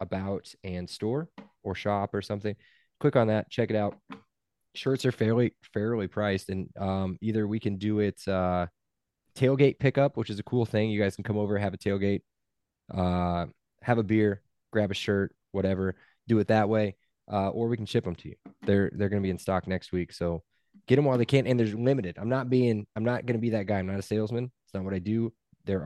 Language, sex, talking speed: English, male, 225 wpm